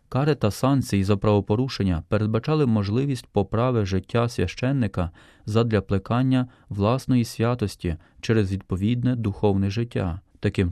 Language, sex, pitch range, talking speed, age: Ukrainian, male, 100-125 Hz, 105 wpm, 20-39